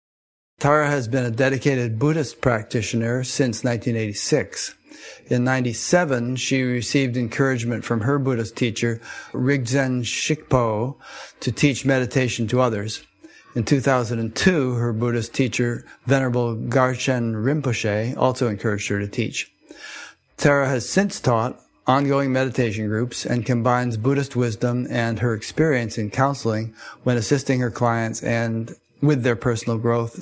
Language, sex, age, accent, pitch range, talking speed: English, male, 60-79, American, 115-130 Hz, 125 wpm